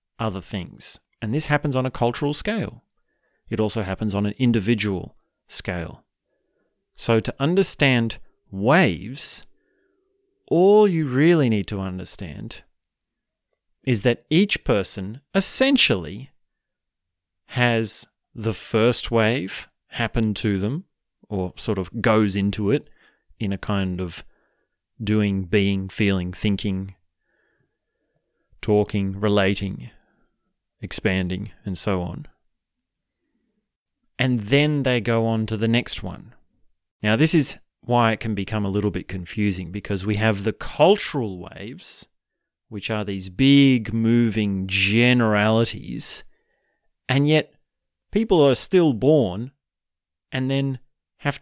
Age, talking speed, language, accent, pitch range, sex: 30-49, 115 wpm, English, Australian, 100-130 Hz, male